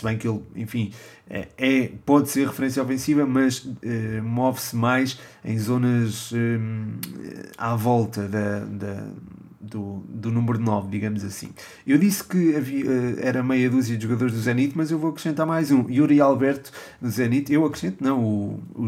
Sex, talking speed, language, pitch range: male, 155 wpm, Portuguese, 115-135 Hz